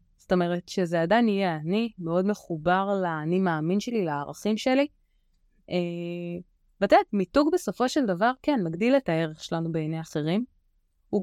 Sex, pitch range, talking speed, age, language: female, 165-215 Hz, 150 wpm, 20-39, Hebrew